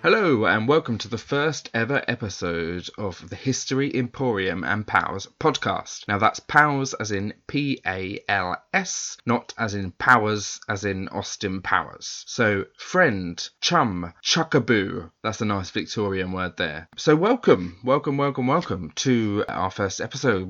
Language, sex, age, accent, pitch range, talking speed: English, male, 20-39, British, 95-120 Hz, 150 wpm